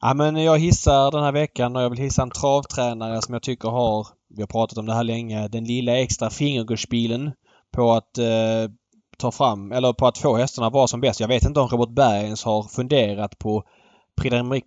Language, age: Swedish, 20-39